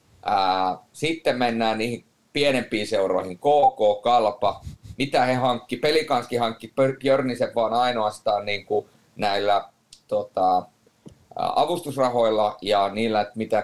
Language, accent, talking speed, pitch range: Finnish, native, 105 wpm, 105-155 Hz